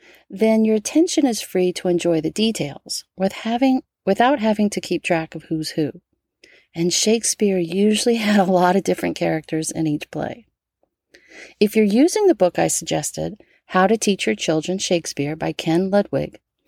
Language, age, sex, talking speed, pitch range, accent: English, 40-59, female, 170 wpm, 165-225 Hz, American